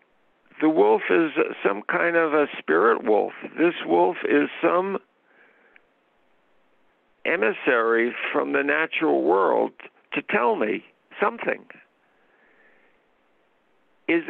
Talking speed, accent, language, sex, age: 95 wpm, American, English, male, 60-79